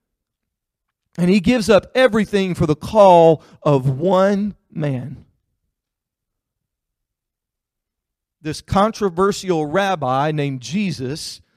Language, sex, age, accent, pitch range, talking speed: English, male, 40-59, American, 135-195 Hz, 85 wpm